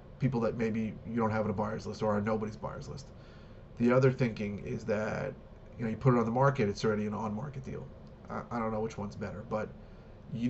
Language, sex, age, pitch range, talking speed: English, male, 30-49, 105-120 Hz, 245 wpm